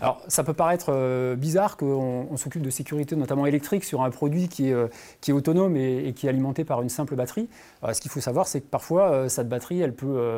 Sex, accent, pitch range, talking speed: male, French, 125-160 Hz, 235 wpm